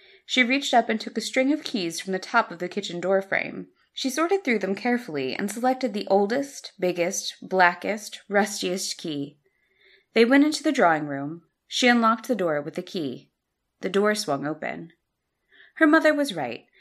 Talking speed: 180 wpm